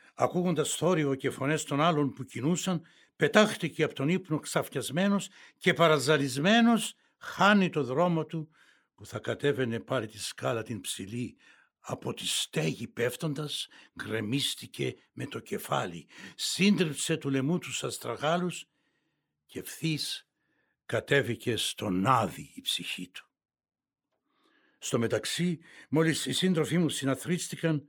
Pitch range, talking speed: 130-170 Hz, 120 wpm